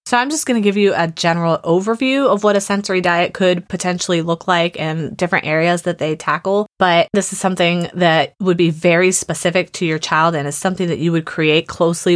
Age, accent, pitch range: 20-39, American, 165-195 Hz